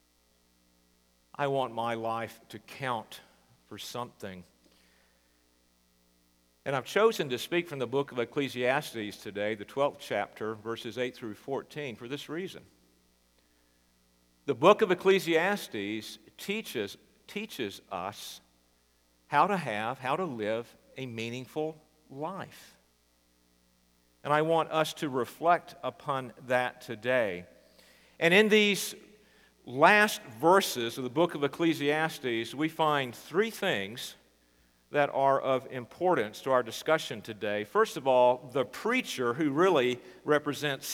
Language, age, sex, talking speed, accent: English, 50-69, male, 125 wpm, American